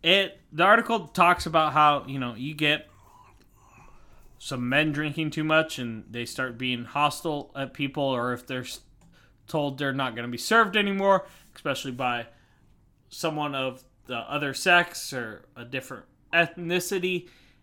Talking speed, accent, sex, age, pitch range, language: 145 wpm, American, male, 20-39, 130-170 Hz, English